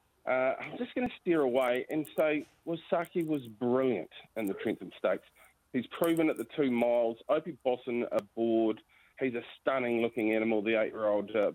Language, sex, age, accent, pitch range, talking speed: English, male, 40-59, Australian, 115-140 Hz, 170 wpm